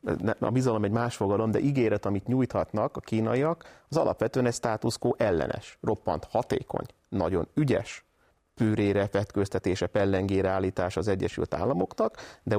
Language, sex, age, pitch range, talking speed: Hungarian, male, 30-49, 95-115 Hz, 130 wpm